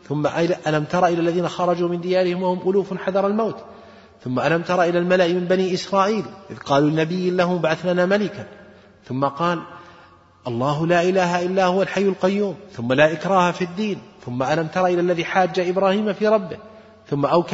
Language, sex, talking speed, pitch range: Arabic, male, 175 wpm, 120-185 Hz